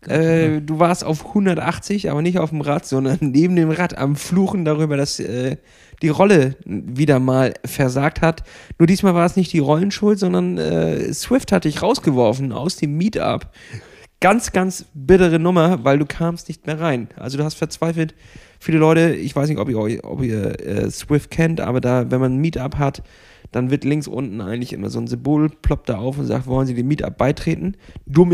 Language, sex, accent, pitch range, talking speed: German, male, German, 130-165 Hz, 200 wpm